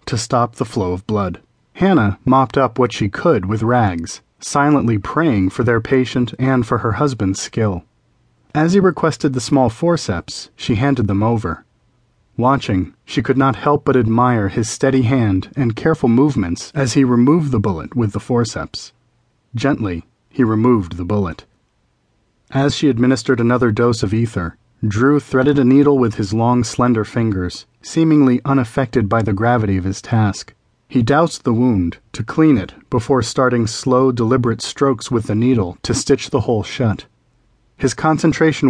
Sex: male